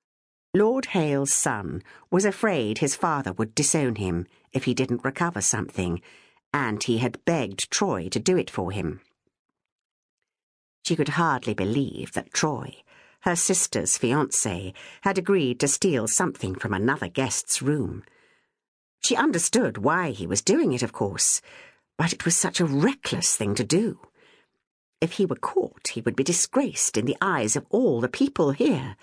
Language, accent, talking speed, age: English, British, 160 wpm, 60-79